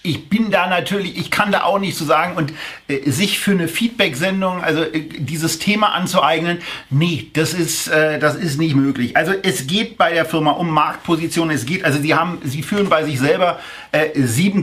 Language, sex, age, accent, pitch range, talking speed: German, male, 40-59, German, 150-180 Hz, 205 wpm